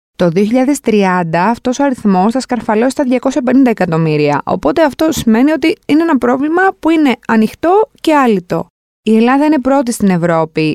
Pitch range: 195-275 Hz